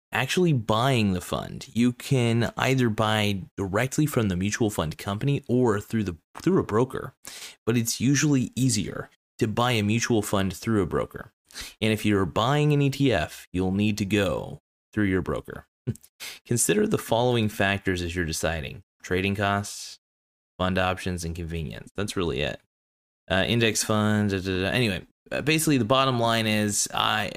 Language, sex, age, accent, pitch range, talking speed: English, male, 30-49, American, 95-115 Hz, 155 wpm